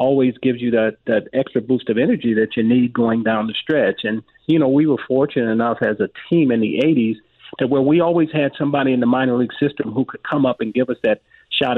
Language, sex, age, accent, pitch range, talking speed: English, male, 40-59, American, 110-130 Hz, 250 wpm